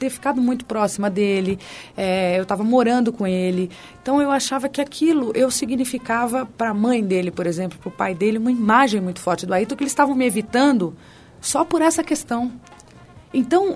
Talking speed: 190 wpm